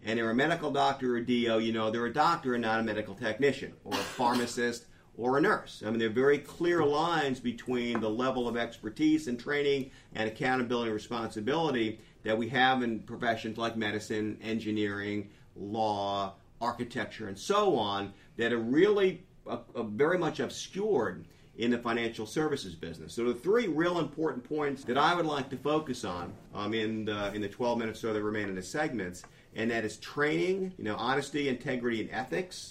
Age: 50-69